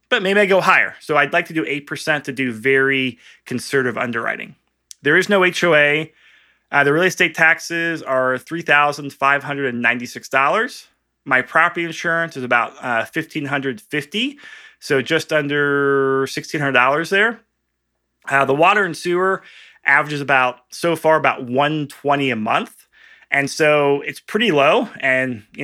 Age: 20-39